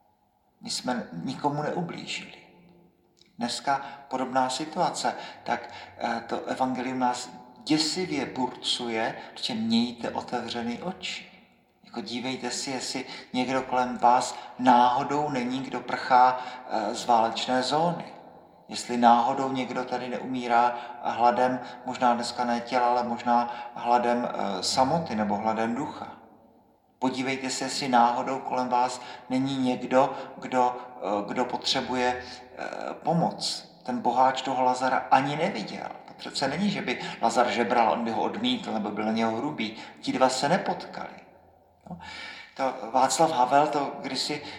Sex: male